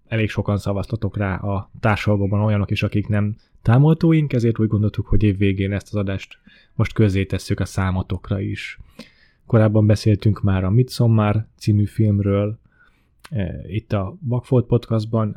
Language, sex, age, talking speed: Hungarian, male, 20-39, 145 wpm